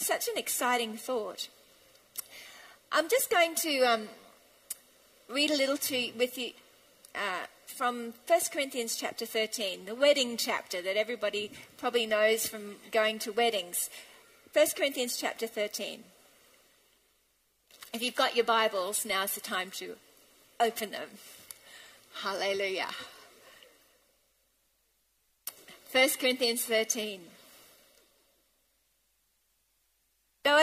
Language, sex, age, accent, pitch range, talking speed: English, female, 40-59, Australian, 220-290 Hz, 100 wpm